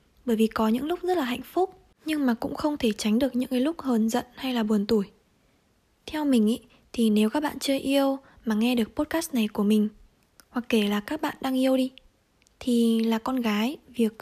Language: Vietnamese